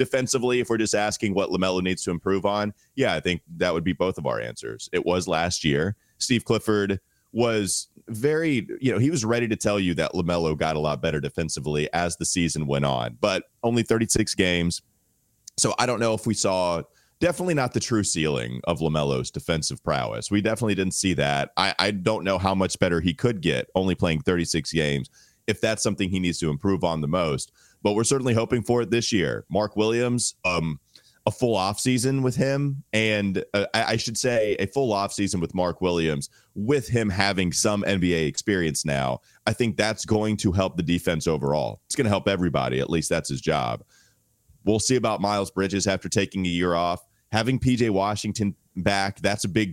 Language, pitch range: English, 85-115 Hz